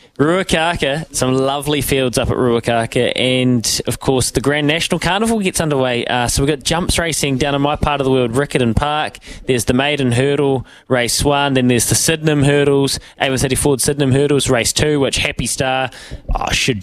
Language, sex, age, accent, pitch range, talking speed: English, male, 20-39, Australian, 120-145 Hz, 195 wpm